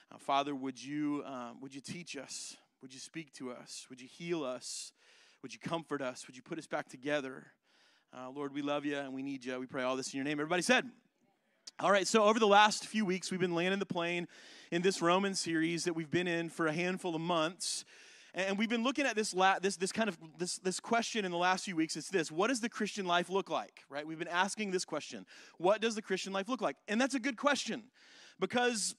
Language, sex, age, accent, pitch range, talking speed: English, male, 30-49, American, 170-225 Hz, 245 wpm